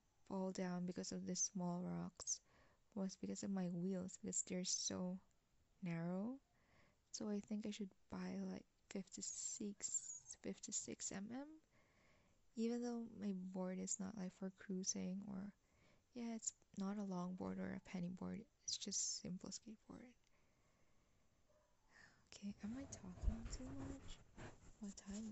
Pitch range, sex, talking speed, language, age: 185-210 Hz, female, 135 wpm, English, 20-39